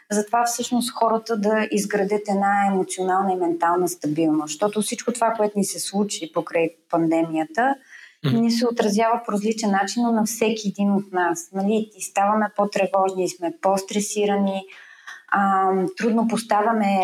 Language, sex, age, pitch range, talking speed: Bulgarian, female, 20-39, 190-220 Hz, 140 wpm